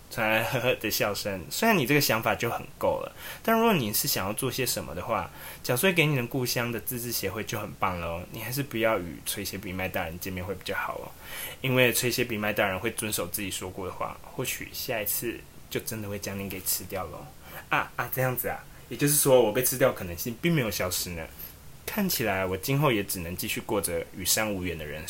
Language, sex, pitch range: Chinese, male, 95-130 Hz